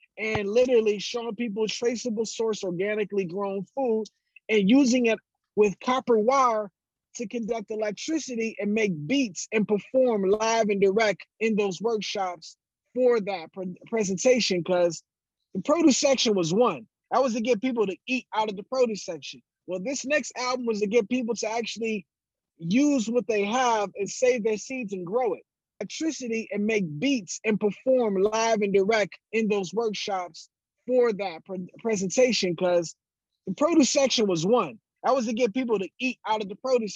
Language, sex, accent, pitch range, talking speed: English, male, American, 200-245 Hz, 170 wpm